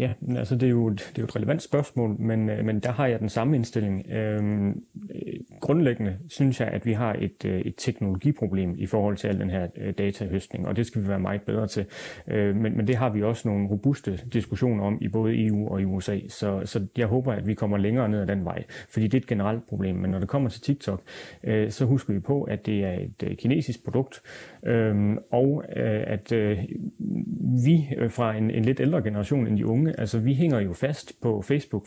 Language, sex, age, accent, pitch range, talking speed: Danish, male, 30-49, native, 105-130 Hz, 220 wpm